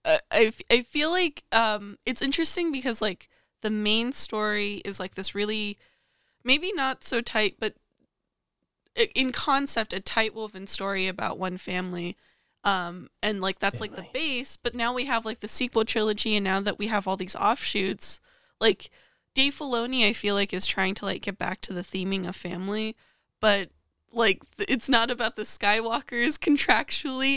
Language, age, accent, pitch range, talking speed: English, 10-29, American, 195-245 Hz, 170 wpm